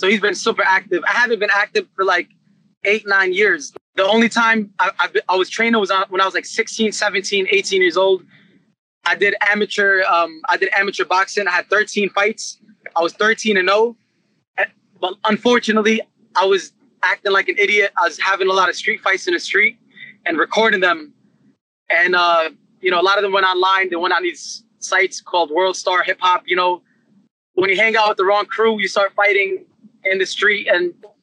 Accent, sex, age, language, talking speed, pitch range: American, male, 20-39, English, 205 wpm, 190-220 Hz